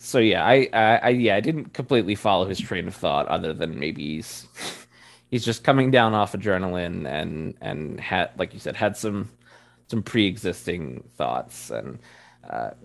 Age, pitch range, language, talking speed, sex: 20-39, 90-125 Hz, English, 175 wpm, male